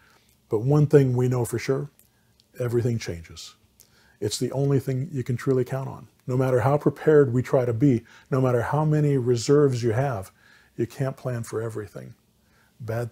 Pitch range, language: 115-140 Hz, English